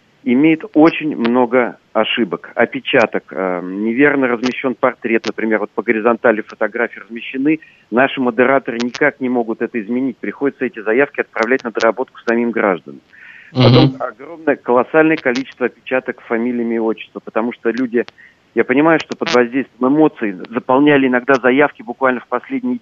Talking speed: 135 wpm